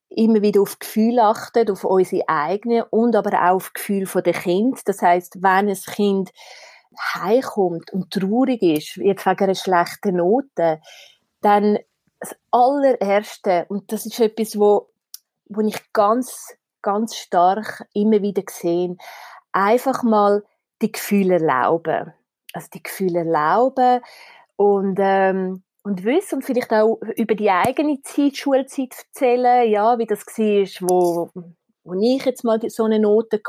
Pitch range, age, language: 190-235 Hz, 30-49, German